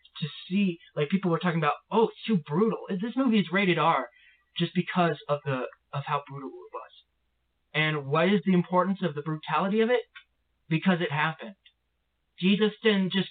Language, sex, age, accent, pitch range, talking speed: English, male, 30-49, American, 120-180 Hz, 185 wpm